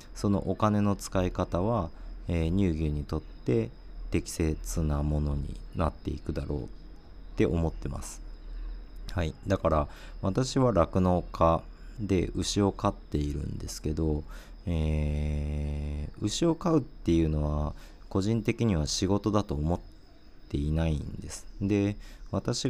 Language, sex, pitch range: Japanese, male, 75-100 Hz